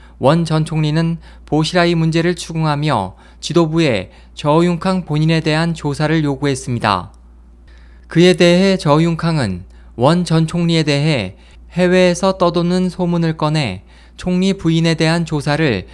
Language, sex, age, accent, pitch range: Korean, male, 20-39, native, 130-170 Hz